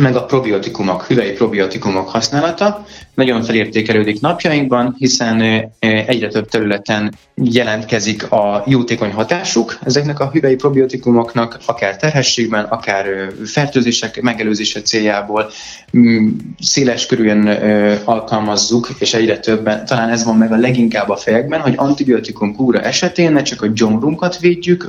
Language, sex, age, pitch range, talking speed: Hungarian, male, 20-39, 105-135 Hz, 120 wpm